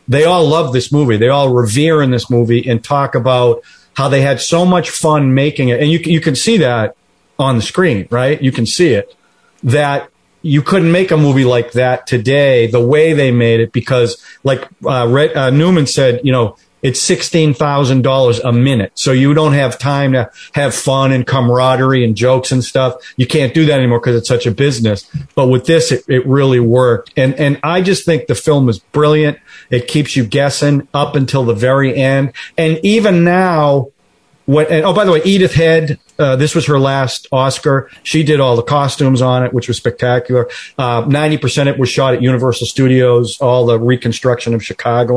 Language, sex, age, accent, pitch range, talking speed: English, male, 40-59, American, 125-150 Hz, 205 wpm